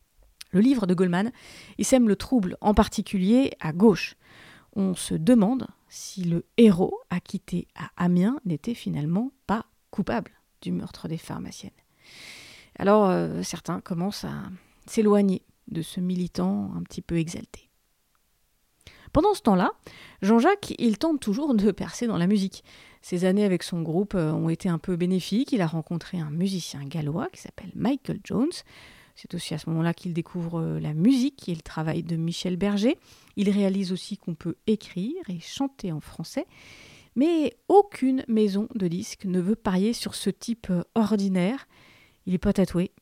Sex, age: female, 30-49